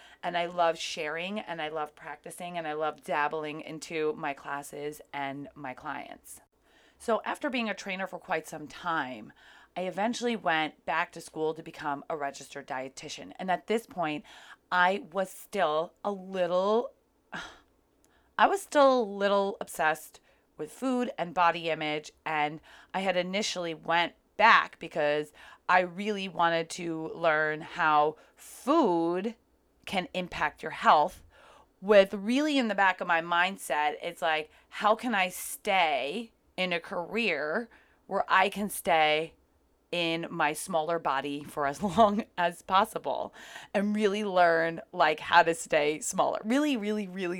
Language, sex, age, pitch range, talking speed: English, female, 30-49, 155-205 Hz, 150 wpm